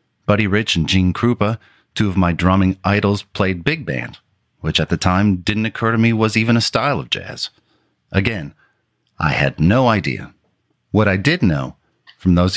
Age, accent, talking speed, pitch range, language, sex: 40-59, American, 180 wpm, 85-110 Hz, English, male